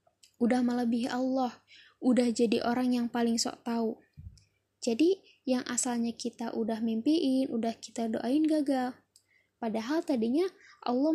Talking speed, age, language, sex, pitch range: 125 wpm, 10-29, Indonesian, female, 230-270 Hz